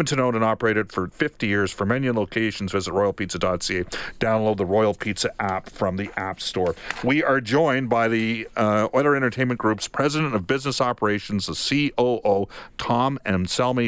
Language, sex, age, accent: English, male, 50-69, American